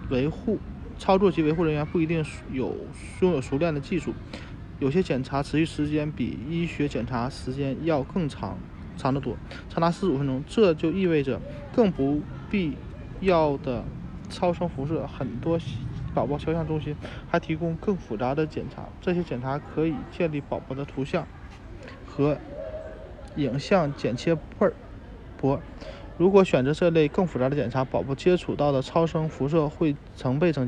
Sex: male